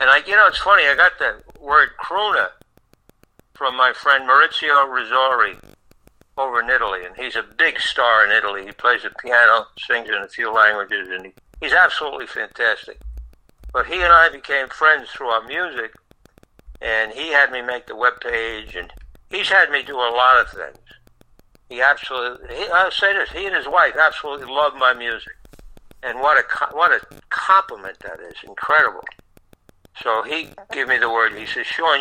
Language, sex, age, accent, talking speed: English, male, 60-79, American, 185 wpm